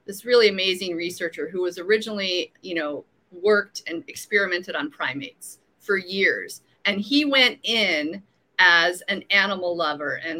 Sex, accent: female, American